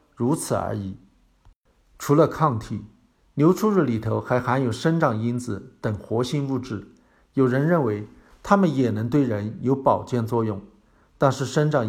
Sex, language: male, Chinese